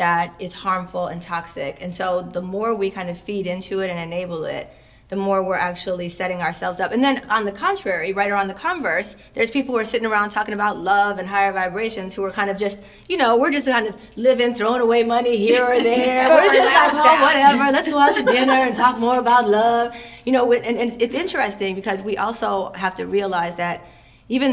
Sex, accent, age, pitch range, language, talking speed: female, American, 30-49, 180-230 Hz, English, 225 wpm